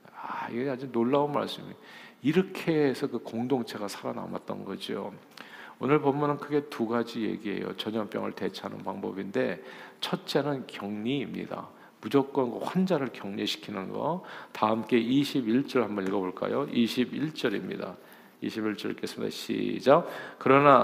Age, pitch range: 50-69, 105-140 Hz